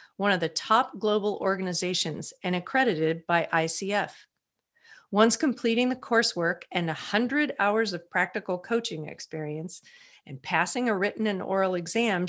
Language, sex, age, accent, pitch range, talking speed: English, female, 40-59, American, 175-225 Hz, 140 wpm